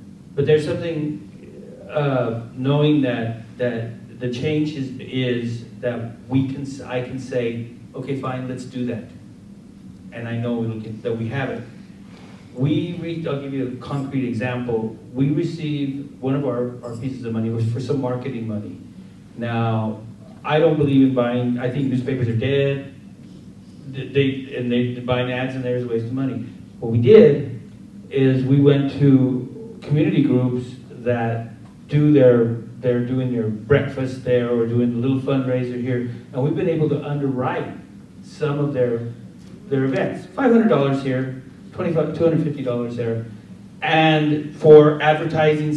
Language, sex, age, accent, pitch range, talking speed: English, male, 40-59, American, 120-150 Hz, 150 wpm